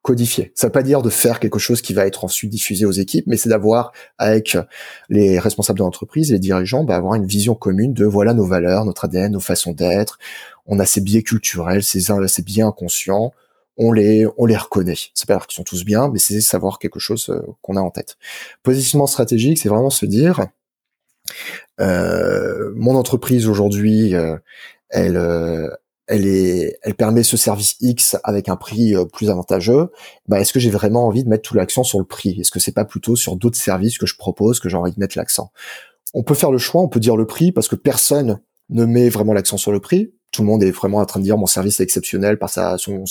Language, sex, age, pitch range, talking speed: French, male, 20-39, 100-120 Hz, 225 wpm